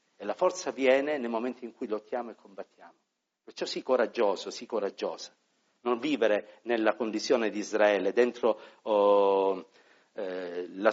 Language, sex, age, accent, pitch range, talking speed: Italian, male, 50-69, native, 110-145 Hz, 145 wpm